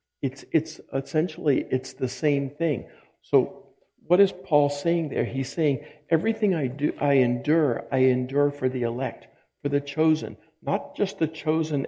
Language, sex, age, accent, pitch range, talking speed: English, male, 60-79, American, 135-155 Hz, 160 wpm